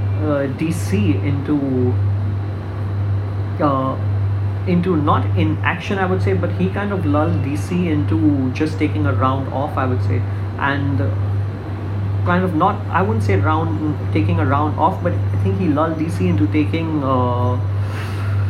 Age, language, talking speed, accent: 30-49, English, 155 wpm, Indian